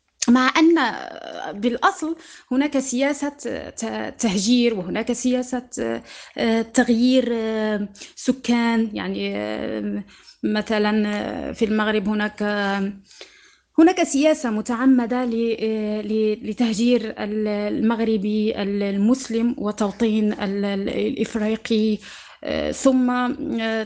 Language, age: Arabic, 20-39